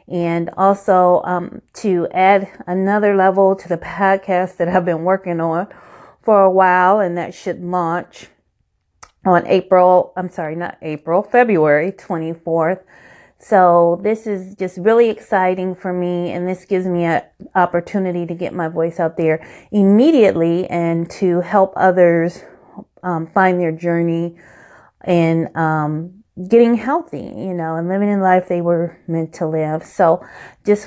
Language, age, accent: English, 30-49, American